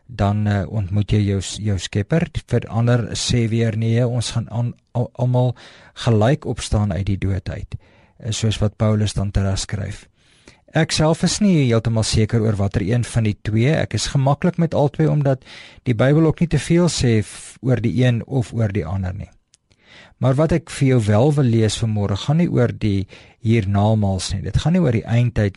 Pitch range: 105-130 Hz